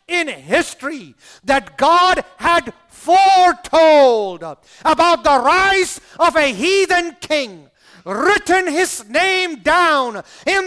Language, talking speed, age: English, 100 wpm, 50-69